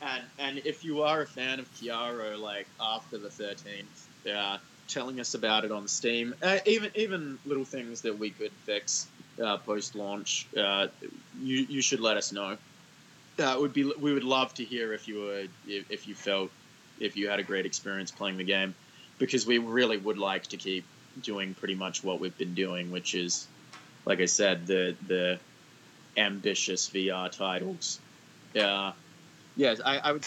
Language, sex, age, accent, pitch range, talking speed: English, male, 20-39, Australian, 100-130 Hz, 185 wpm